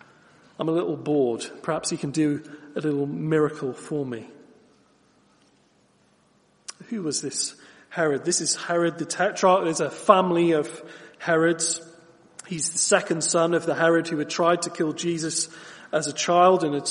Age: 40-59